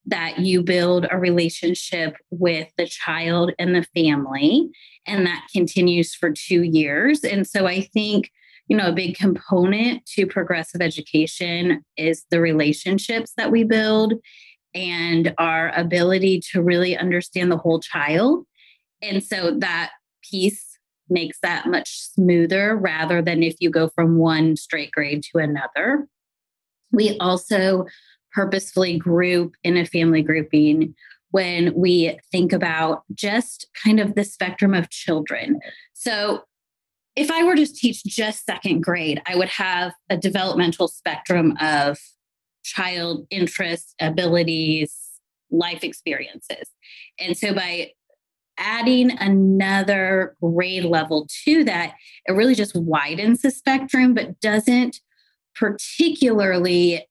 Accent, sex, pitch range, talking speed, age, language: American, female, 170-210 Hz, 125 wpm, 30-49, English